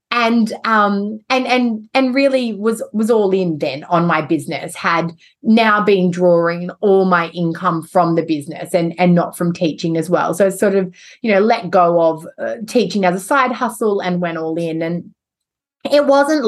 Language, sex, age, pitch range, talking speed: English, female, 30-49, 170-210 Hz, 190 wpm